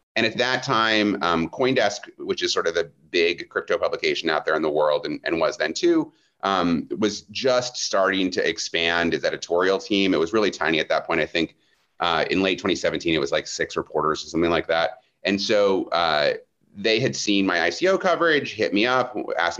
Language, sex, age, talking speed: English, male, 30-49, 210 wpm